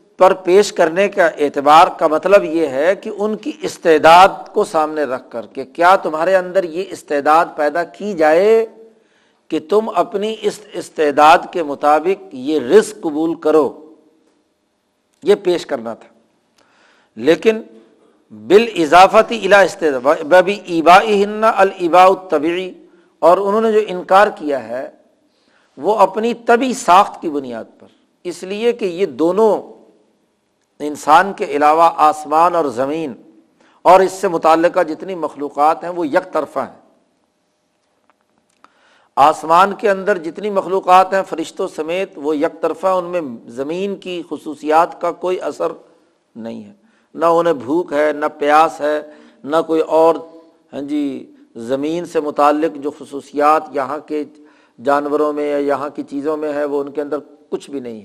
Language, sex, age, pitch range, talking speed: Urdu, male, 60-79, 150-200 Hz, 145 wpm